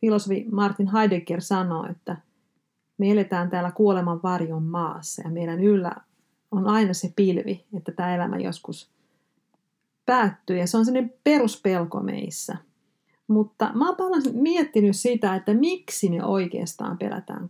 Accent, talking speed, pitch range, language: native, 125 wpm, 190-220 Hz, Finnish